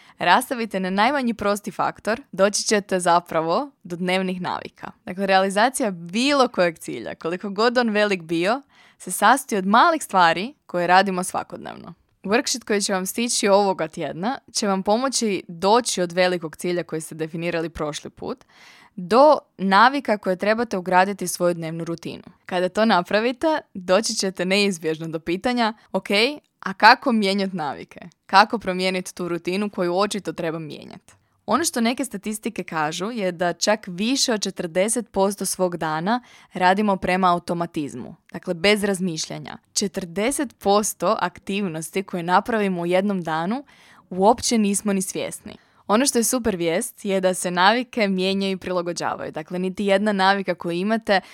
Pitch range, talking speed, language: 180-215 Hz, 145 wpm, Croatian